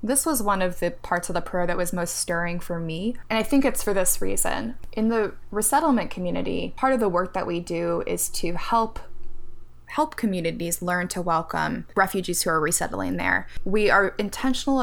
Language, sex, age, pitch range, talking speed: English, female, 20-39, 175-210 Hz, 200 wpm